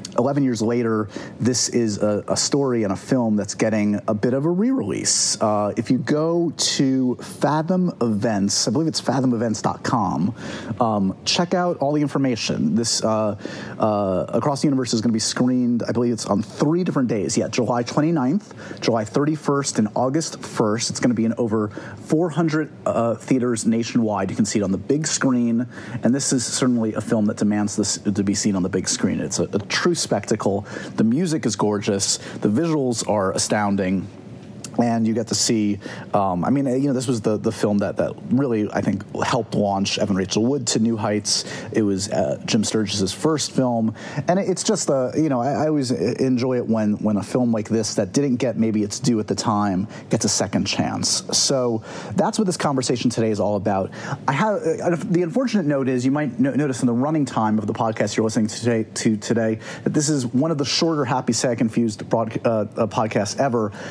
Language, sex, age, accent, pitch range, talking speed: English, male, 30-49, American, 105-140 Hz, 205 wpm